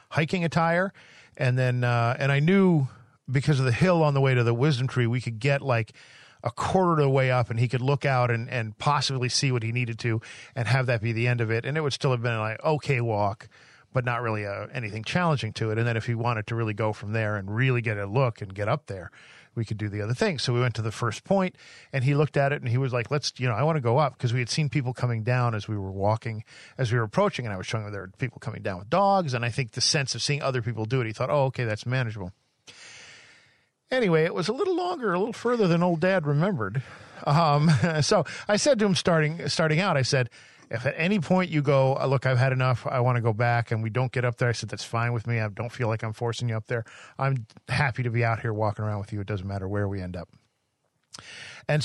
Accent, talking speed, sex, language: American, 275 wpm, male, English